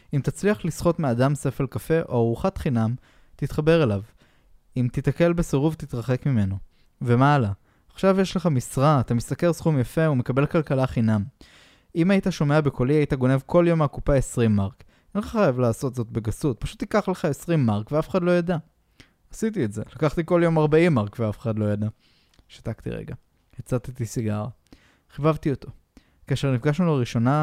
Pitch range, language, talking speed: 115-155 Hz, Hebrew, 165 wpm